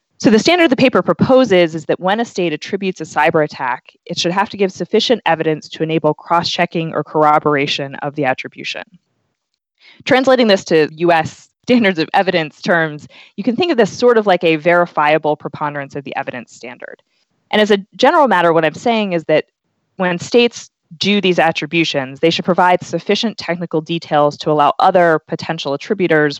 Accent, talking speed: American, 180 wpm